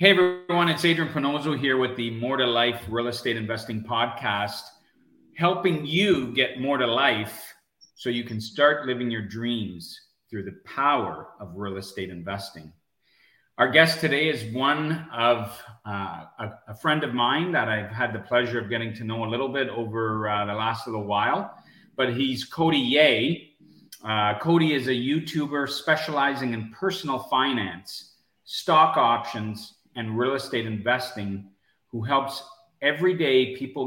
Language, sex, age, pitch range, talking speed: English, male, 40-59, 110-145 Hz, 160 wpm